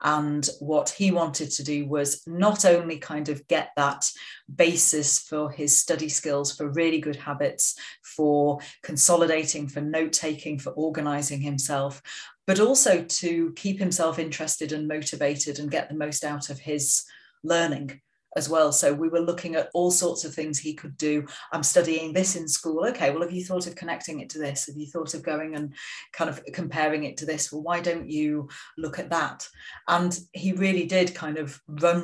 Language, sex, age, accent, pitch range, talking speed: English, female, 40-59, British, 150-175 Hz, 190 wpm